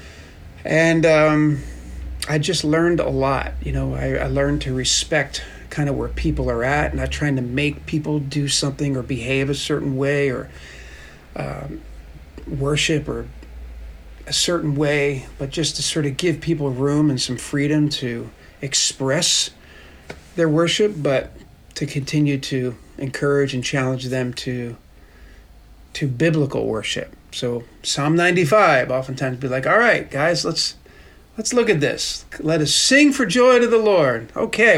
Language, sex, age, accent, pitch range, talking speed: English, male, 40-59, American, 130-180 Hz, 155 wpm